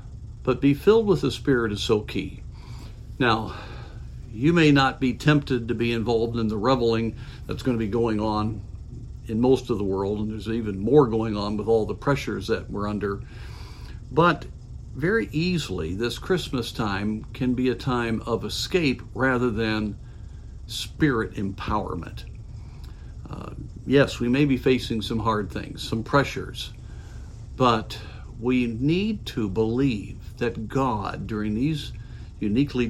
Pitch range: 105-135 Hz